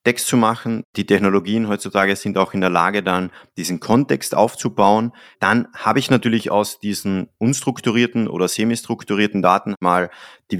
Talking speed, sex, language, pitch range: 155 wpm, male, German, 95-110 Hz